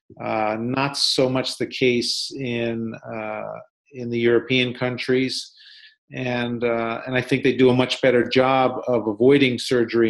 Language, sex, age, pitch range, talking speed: English, male, 40-59, 115-140 Hz, 155 wpm